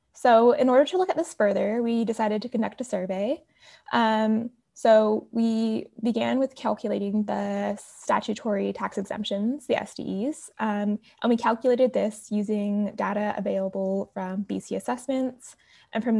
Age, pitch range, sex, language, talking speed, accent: 10-29, 200-235 Hz, female, English, 145 wpm, American